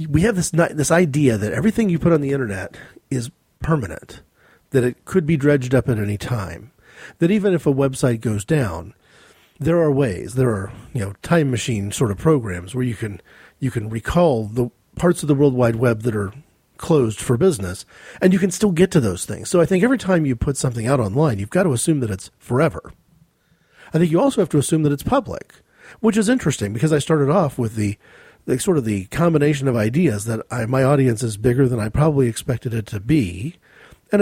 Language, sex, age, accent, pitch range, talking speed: English, male, 40-59, American, 115-165 Hz, 215 wpm